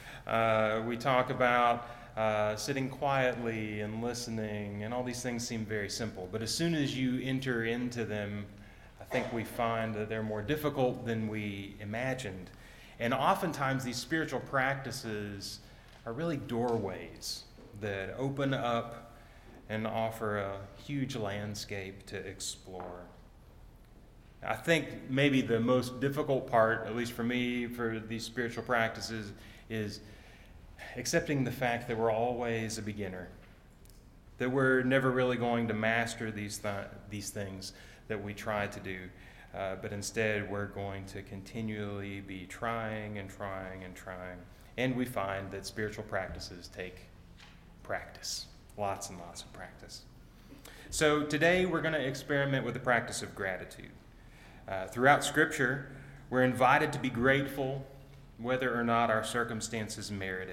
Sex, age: male, 30-49